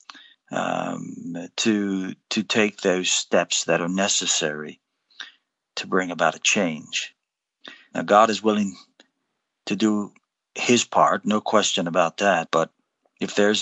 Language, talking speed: English, 130 wpm